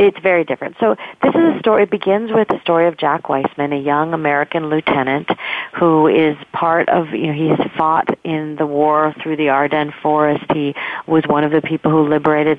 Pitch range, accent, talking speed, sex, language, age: 150-180 Hz, American, 210 wpm, female, English, 40-59